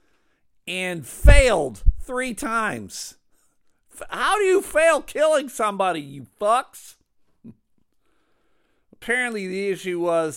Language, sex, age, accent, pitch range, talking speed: English, male, 50-69, American, 115-170 Hz, 95 wpm